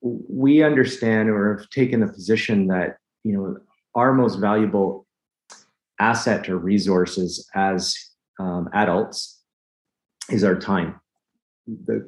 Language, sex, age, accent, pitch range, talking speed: English, male, 30-49, American, 90-105 Hz, 115 wpm